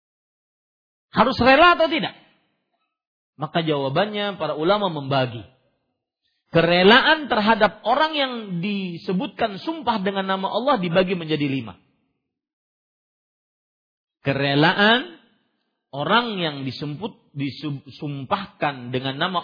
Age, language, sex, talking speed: 40-59, Malay, male, 85 wpm